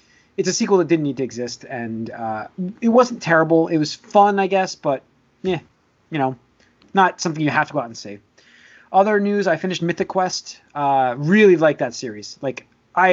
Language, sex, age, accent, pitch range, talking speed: English, male, 30-49, American, 135-185 Hz, 200 wpm